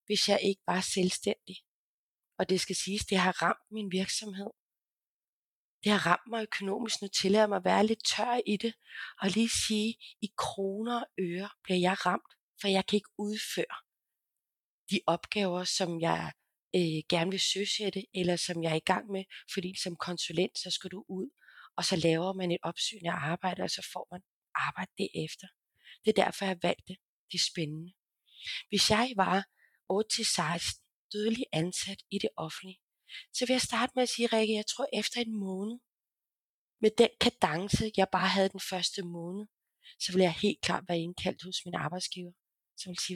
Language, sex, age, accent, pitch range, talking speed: Danish, female, 30-49, native, 175-210 Hz, 190 wpm